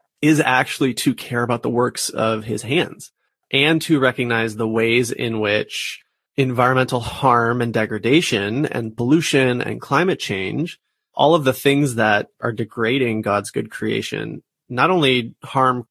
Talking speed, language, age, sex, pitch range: 145 wpm, English, 30-49, male, 115-135 Hz